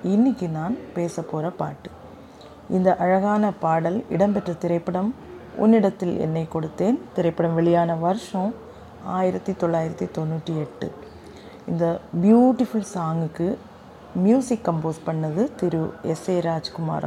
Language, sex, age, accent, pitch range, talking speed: Tamil, female, 30-49, native, 170-215 Hz, 105 wpm